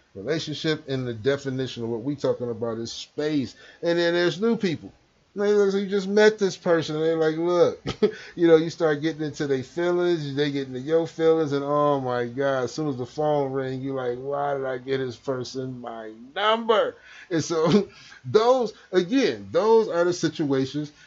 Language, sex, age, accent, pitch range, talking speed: English, male, 30-49, American, 130-165 Hz, 195 wpm